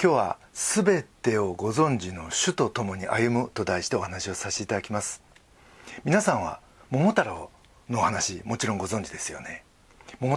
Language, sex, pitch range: Japanese, male, 95-150 Hz